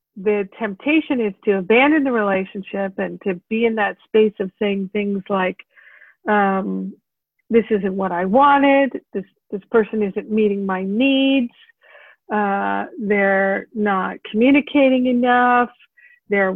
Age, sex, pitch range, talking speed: 50-69, female, 200-255 Hz, 130 wpm